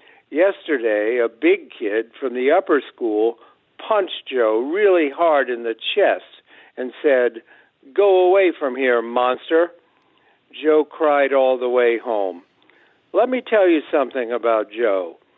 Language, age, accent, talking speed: English, 60-79, American, 135 wpm